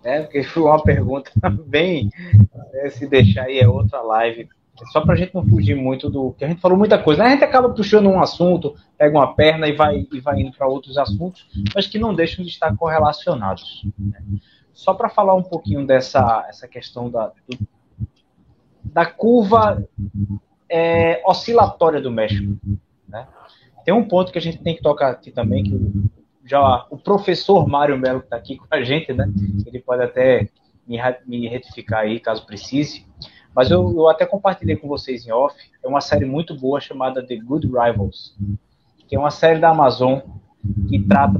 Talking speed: 185 wpm